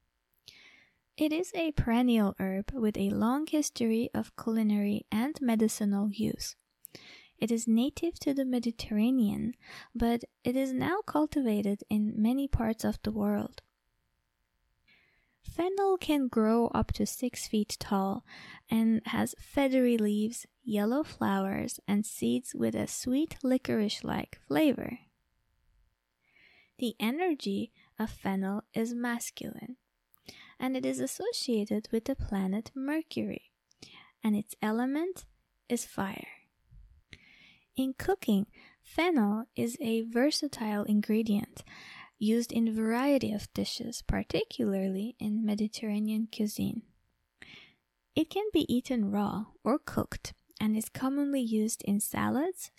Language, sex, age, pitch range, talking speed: English, female, 20-39, 205-260 Hz, 115 wpm